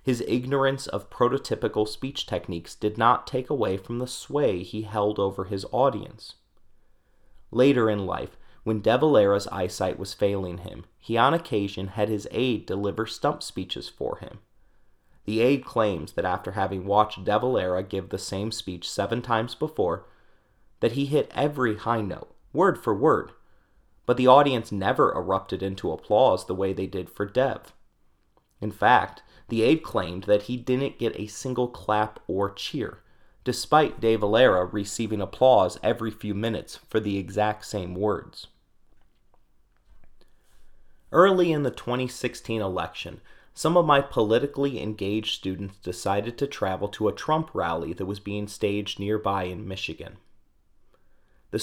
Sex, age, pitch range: male, 30-49, 95-125 Hz